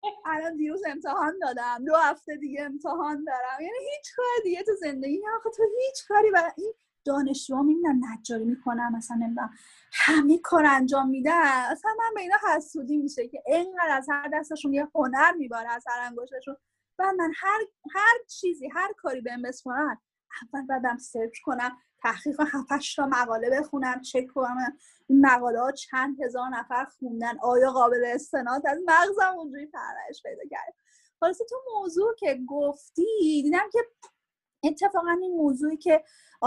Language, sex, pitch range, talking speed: Persian, female, 255-340 Hz, 150 wpm